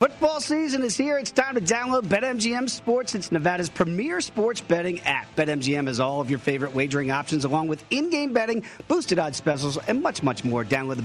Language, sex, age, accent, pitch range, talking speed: English, male, 40-59, American, 130-180 Hz, 200 wpm